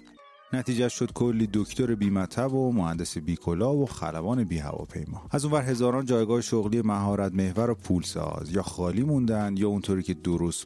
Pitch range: 85-115 Hz